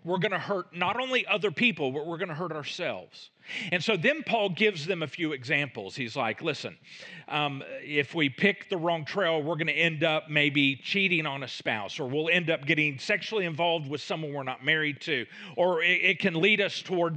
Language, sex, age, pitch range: English, male, 40-59, 150-200 Hz